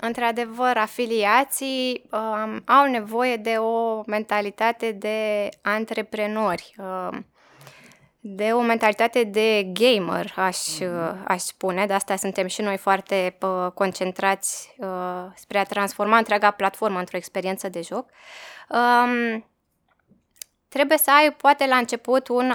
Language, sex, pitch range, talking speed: Romanian, female, 200-240 Hz, 105 wpm